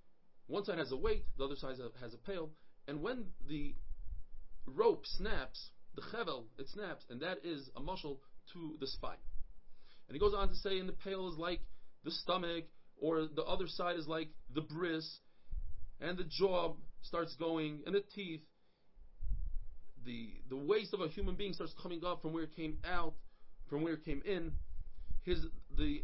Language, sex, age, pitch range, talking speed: English, male, 30-49, 145-180 Hz, 180 wpm